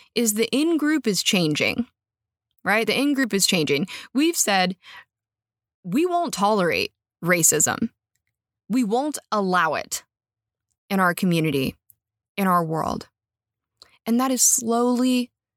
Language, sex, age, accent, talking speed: English, female, 20-39, American, 115 wpm